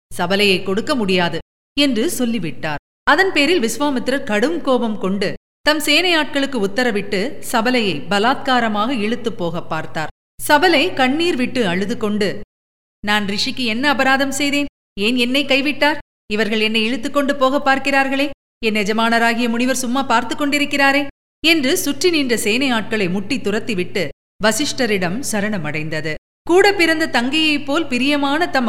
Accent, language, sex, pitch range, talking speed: native, Tamil, female, 200-275 Hz, 115 wpm